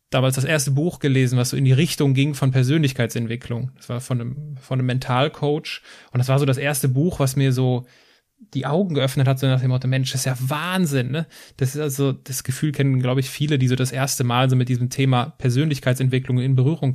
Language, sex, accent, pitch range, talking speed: German, male, German, 130-150 Hz, 230 wpm